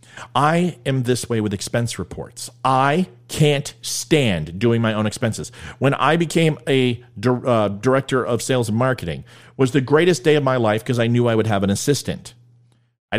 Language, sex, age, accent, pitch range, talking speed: English, male, 40-59, American, 120-155 Hz, 180 wpm